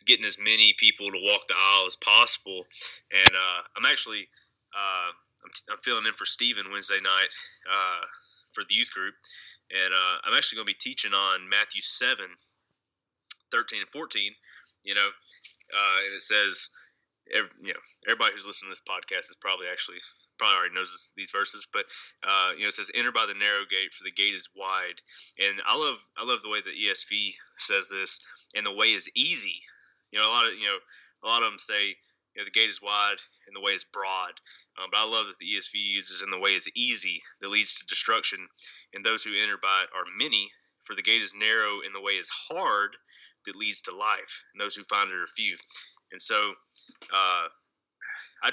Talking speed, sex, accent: 210 wpm, male, American